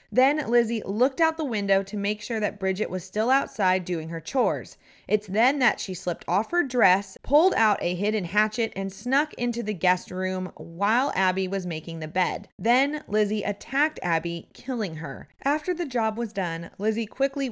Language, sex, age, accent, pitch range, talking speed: English, female, 30-49, American, 180-240 Hz, 190 wpm